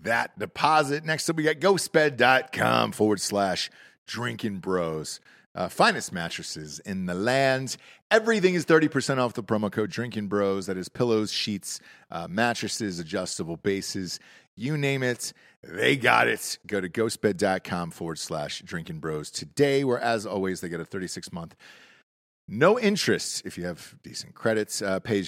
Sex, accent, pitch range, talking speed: male, American, 95-135 Hz, 155 wpm